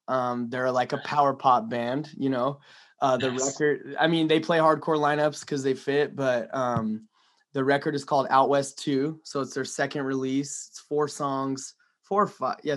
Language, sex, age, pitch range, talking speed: English, male, 20-39, 130-150 Hz, 195 wpm